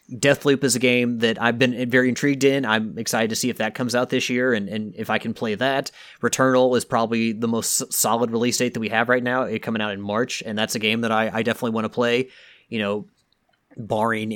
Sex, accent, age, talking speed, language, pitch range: male, American, 30-49, 245 wpm, English, 110-130 Hz